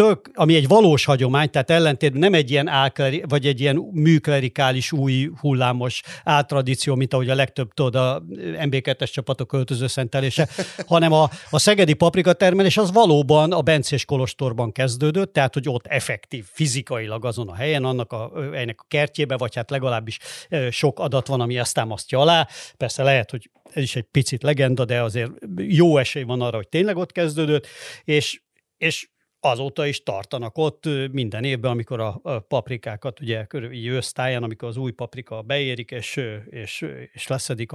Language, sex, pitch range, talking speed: Hungarian, male, 120-150 Hz, 160 wpm